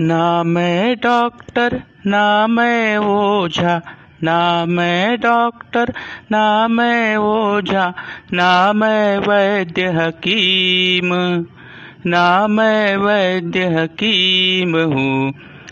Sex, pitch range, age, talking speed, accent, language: male, 135-210 Hz, 50-69, 70 wpm, native, Marathi